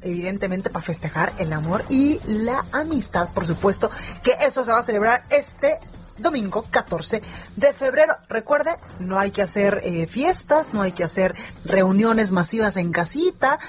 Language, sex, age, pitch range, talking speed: Spanish, female, 30-49, 195-270 Hz, 160 wpm